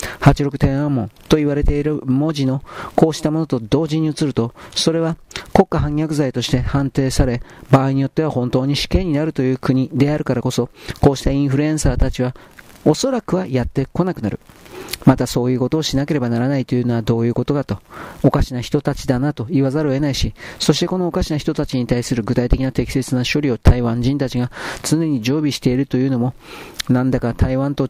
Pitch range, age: 125-145 Hz, 40-59